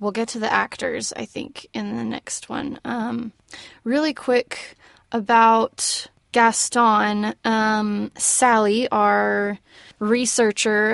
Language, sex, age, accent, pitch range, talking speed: English, female, 20-39, American, 210-240 Hz, 110 wpm